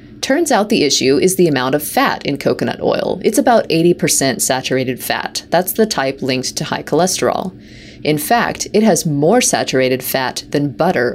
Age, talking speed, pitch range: 30-49, 180 wpm, 135-195 Hz